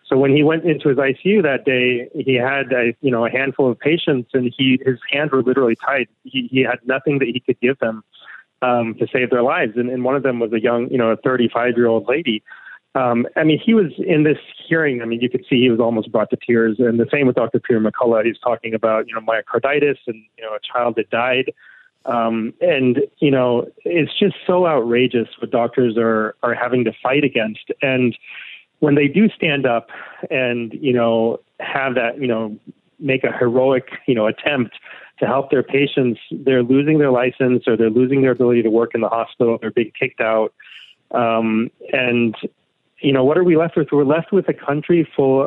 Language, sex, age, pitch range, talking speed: English, male, 30-49, 115-140 Hz, 220 wpm